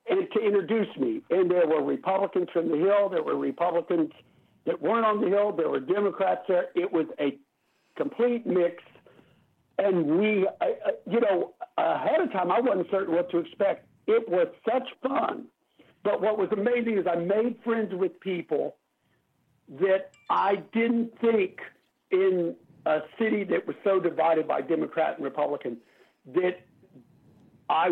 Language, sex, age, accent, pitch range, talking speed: English, male, 60-79, American, 175-240 Hz, 155 wpm